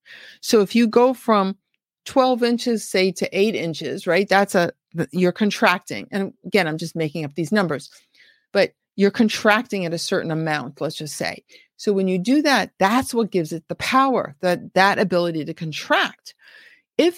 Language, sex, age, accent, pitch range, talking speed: English, female, 50-69, American, 185-255 Hz, 180 wpm